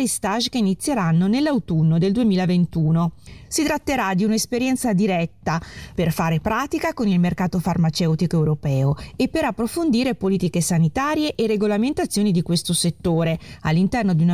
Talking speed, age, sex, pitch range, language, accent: 135 wpm, 30-49, female, 165-225 Hz, Italian, native